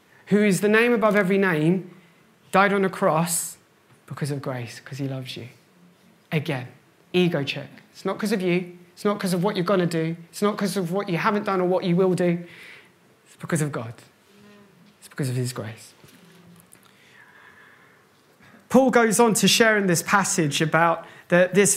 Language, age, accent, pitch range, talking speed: English, 20-39, British, 150-190 Hz, 185 wpm